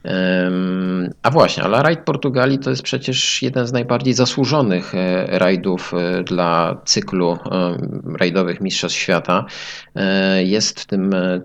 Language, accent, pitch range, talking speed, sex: Polish, native, 85-95 Hz, 110 wpm, male